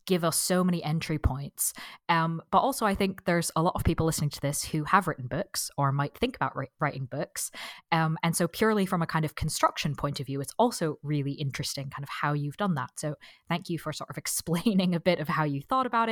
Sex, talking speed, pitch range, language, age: female, 240 wpm, 145-185 Hz, English, 20-39